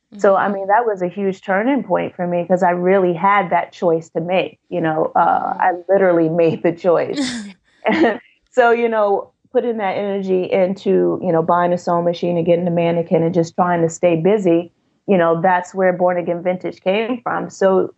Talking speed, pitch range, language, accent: 200 wpm, 165-195 Hz, English, American